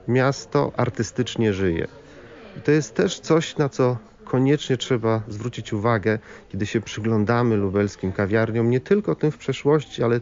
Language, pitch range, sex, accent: Polish, 110-150 Hz, male, native